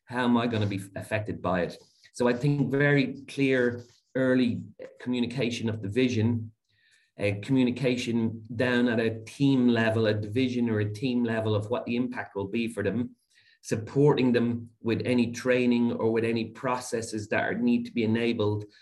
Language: English